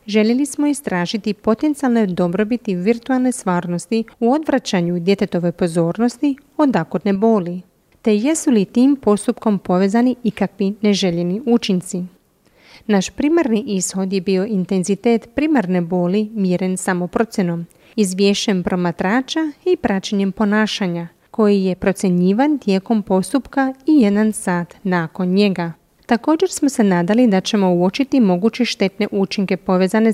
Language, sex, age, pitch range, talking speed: Croatian, female, 30-49, 185-235 Hz, 115 wpm